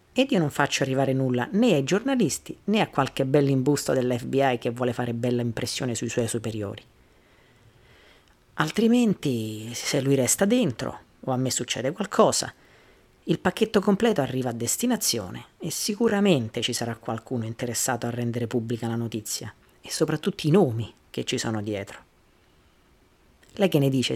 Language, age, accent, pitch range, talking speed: Italian, 40-59, native, 115-145 Hz, 150 wpm